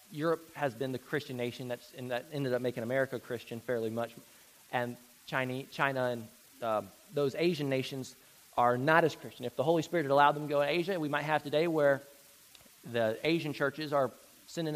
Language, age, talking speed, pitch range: English, 20-39, 195 wpm, 130-170 Hz